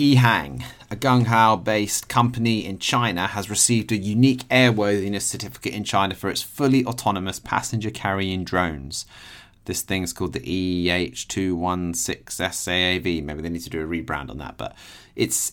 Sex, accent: male, British